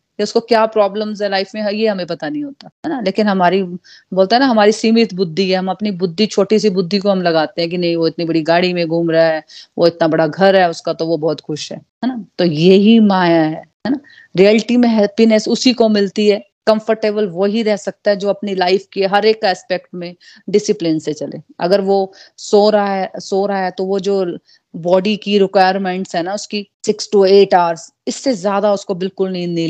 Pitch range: 180-220 Hz